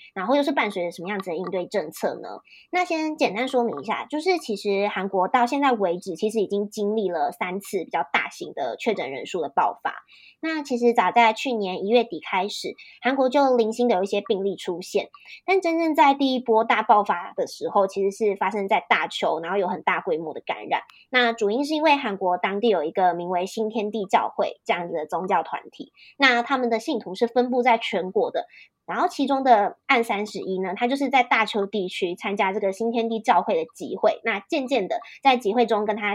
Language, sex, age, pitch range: Chinese, male, 20-39, 200-260 Hz